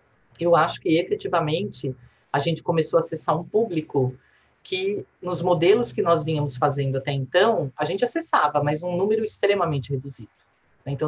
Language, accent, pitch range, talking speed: Portuguese, Brazilian, 145-185 Hz, 155 wpm